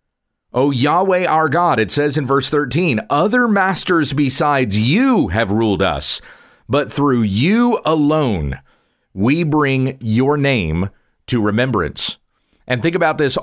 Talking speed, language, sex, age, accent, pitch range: 135 wpm, English, male, 40-59, American, 115-155 Hz